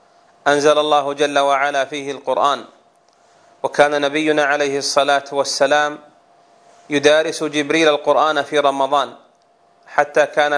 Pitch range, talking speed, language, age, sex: 140-155 Hz, 100 wpm, Arabic, 30-49, male